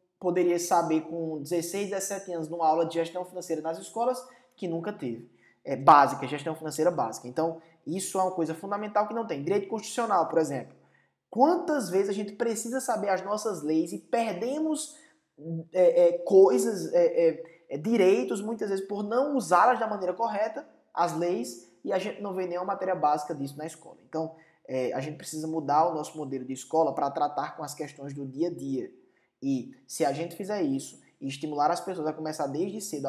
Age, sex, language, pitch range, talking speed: 20-39, male, Portuguese, 150-205 Hz, 190 wpm